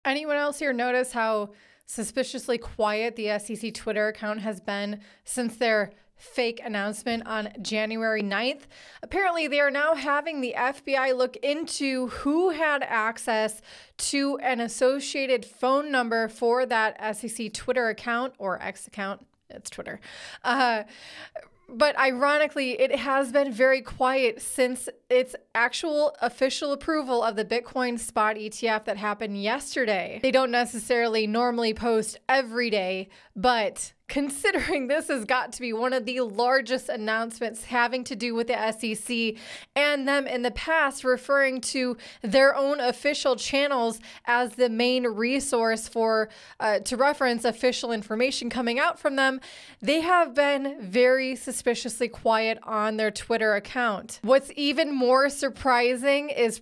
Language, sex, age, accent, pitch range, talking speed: English, female, 20-39, American, 225-275 Hz, 140 wpm